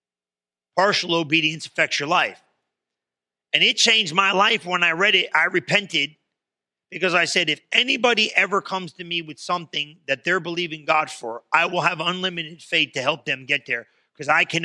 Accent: American